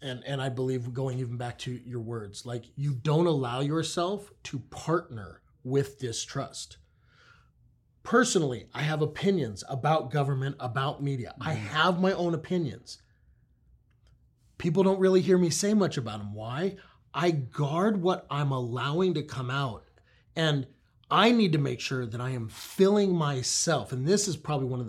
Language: English